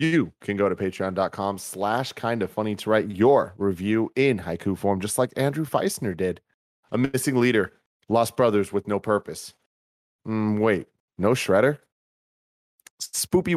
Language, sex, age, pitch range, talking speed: English, male, 30-49, 95-125 Hz, 150 wpm